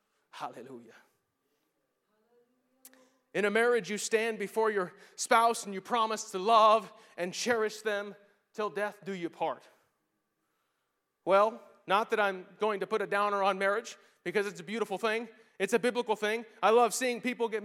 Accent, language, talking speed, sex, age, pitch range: American, English, 160 wpm, male, 30-49, 205-265 Hz